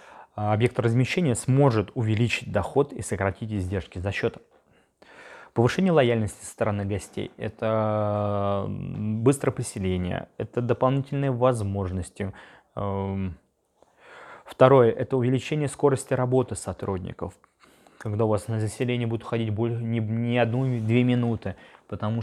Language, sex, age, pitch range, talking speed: Russian, male, 20-39, 105-120 Hz, 110 wpm